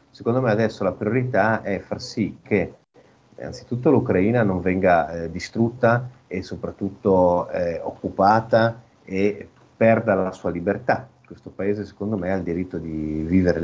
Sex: male